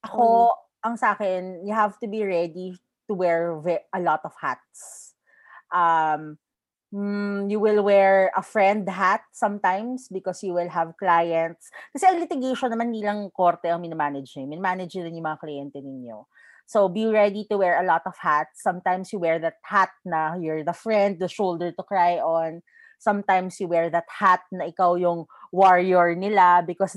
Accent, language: native, Filipino